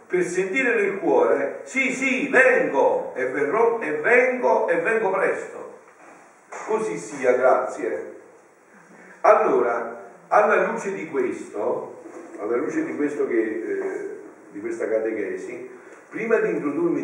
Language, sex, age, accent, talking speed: Italian, male, 50-69, native, 115 wpm